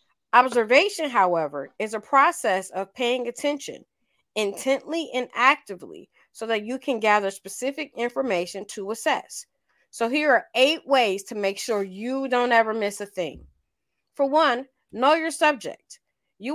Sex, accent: female, American